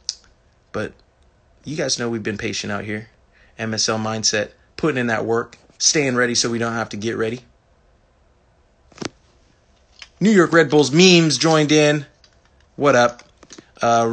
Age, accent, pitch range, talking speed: 20-39, American, 110-135 Hz, 145 wpm